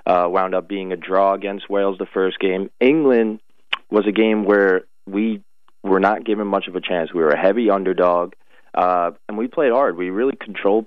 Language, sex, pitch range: English, male, 90-105 Hz